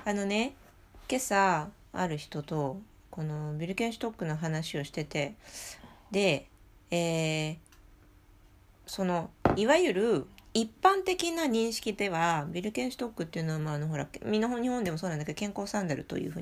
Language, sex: Japanese, female